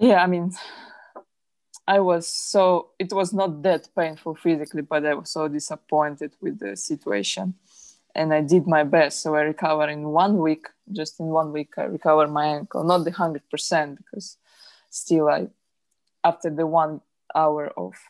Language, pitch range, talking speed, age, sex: English, 155-185 Hz, 170 wpm, 20-39, female